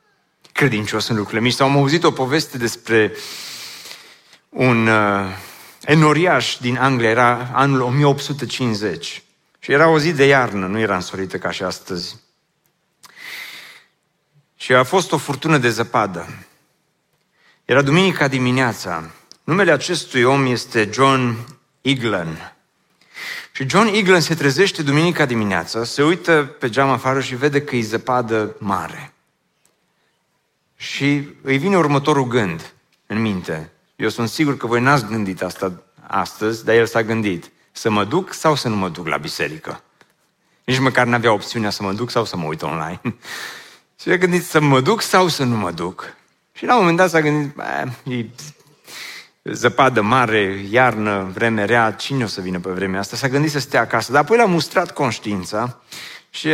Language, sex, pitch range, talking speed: Romanian, male, 110-150 Hz, 155 wpm